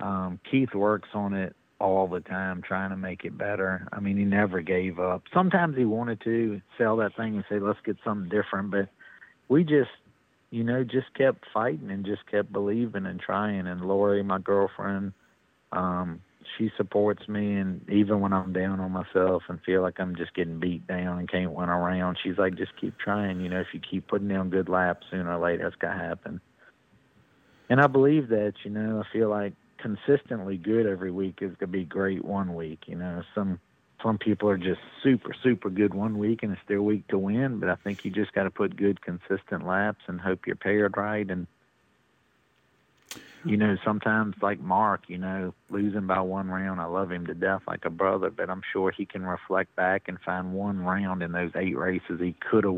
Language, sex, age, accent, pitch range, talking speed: English, male, 40-59, American, 90-105 Hz, 210 wpm